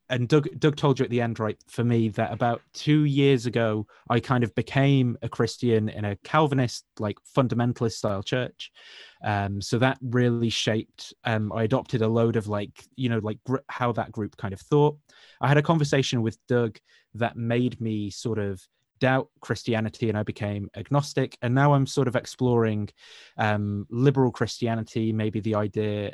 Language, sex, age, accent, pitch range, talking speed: English, male, 20-39, British, 110-130 Hz, 185 wpm